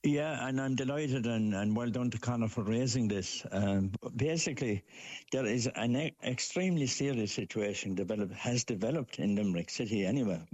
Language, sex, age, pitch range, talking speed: English, male, 60-79, 105-135 Hz, 165 wpm